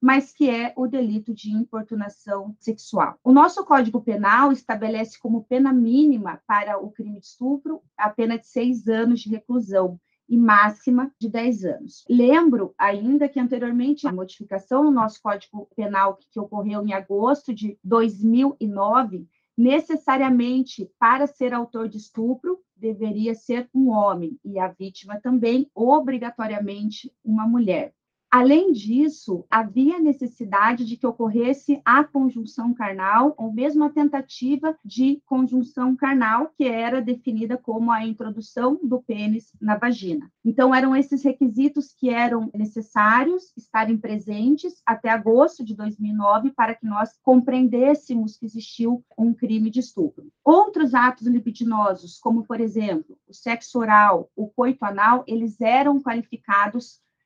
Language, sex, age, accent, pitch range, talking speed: Portuguese, female, 30-49, Brazilian, 215-265 Hz, 135 wpm